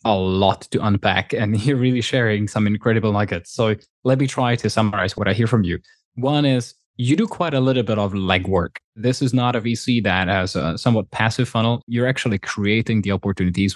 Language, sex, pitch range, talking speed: English, male, 95-120 Hz, 210 wpm